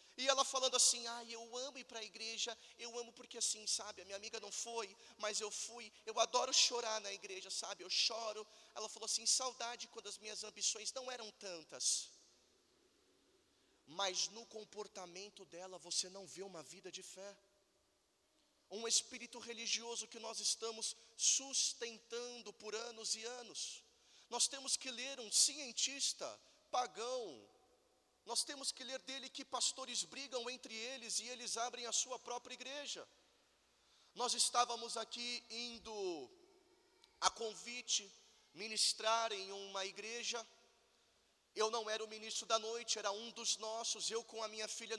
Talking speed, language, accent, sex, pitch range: 155 wpm, Portuguese, Brazilian, male, 215-250 Hz